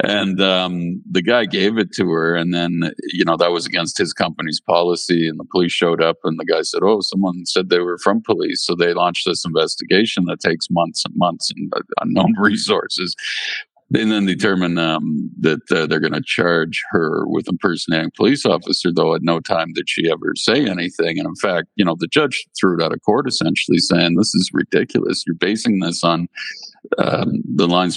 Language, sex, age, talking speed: English, male, 50-69, 205 wpm